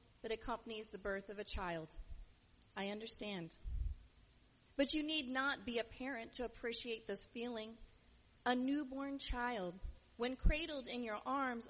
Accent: American